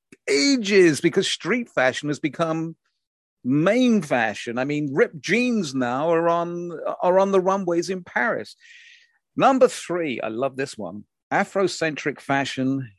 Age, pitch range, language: 50-69, 125-170 Hz, English